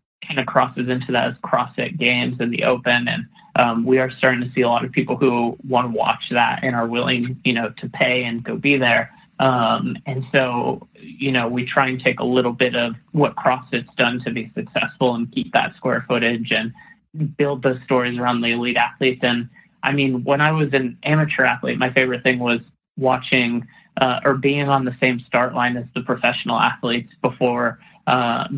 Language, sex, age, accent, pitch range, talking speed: English, male, 30-49, American, 120-135 Hz, 205 wpm